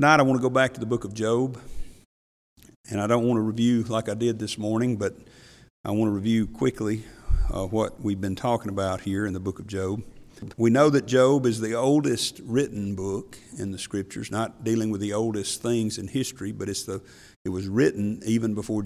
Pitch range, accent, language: 105-125 Hz, American, English